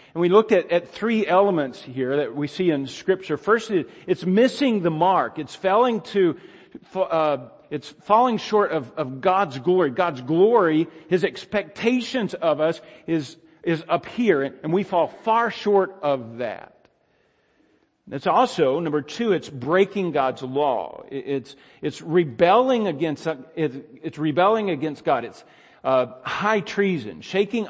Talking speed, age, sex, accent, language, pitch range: 145 wpm, 50-69, male, American, English, 140-190 Hz